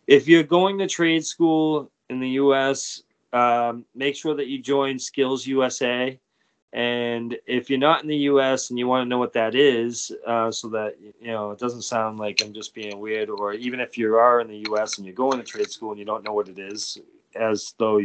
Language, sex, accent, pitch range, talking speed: English, male, American, 110-130 Hz, 225 wpm